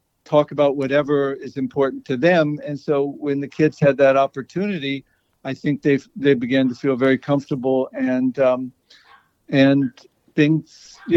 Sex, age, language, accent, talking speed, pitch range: male, 60-79, English, American, 155 wpm, 130-150 Hz